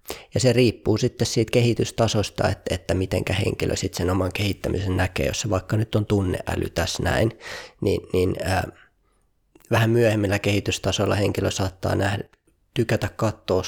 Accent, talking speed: native, 145 wpm